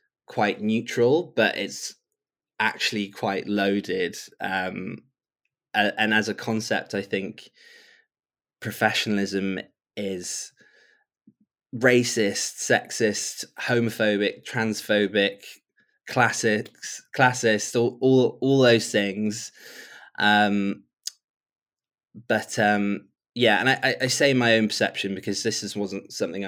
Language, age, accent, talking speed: English, 20-39, British, 90 wpm